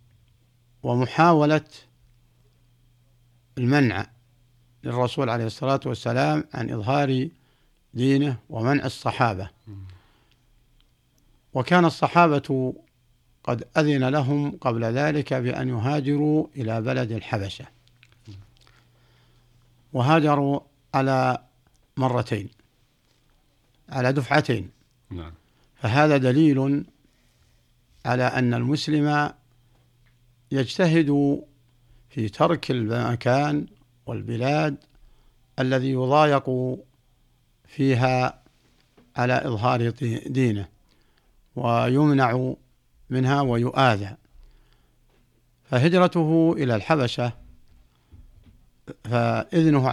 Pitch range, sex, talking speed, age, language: 120-140 Hz, male, 60 wpm, 60-79, Arabic